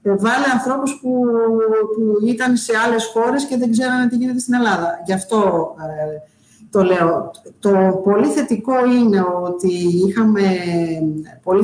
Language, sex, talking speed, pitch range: Greek, female, 140 wpm, 175-215 Hz